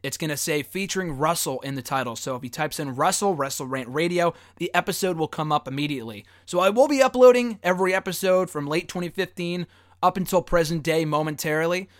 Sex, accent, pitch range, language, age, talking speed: male, American, 140-180 Hz, English, 20-39, 195 wpm